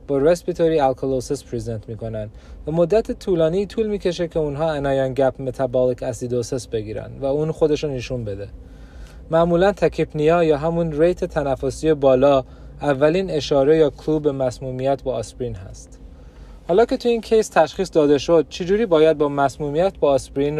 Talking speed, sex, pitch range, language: 155 wpm, male, 130-165 Hz, Persian